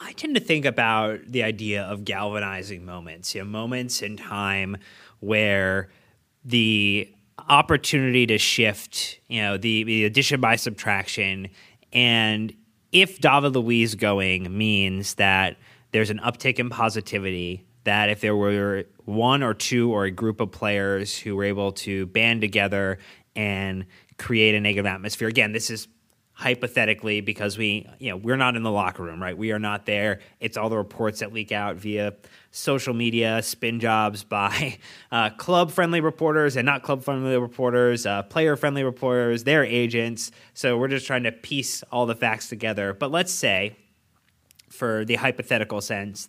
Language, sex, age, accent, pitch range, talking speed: English, male, 20-39, American, 100-120 Hz, 165 wpm